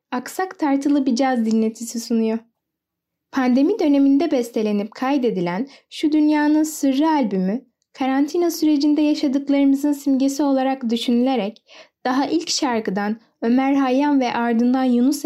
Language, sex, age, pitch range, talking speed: Turkish, female, 10-29, 205-270 Hz, 110 wpm